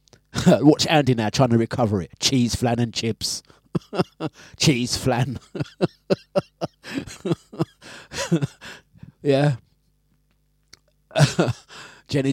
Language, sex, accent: English, male, British